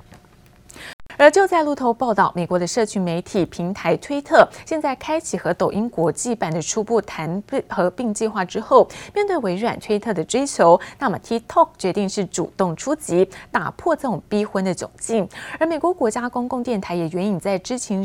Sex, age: female, 30-49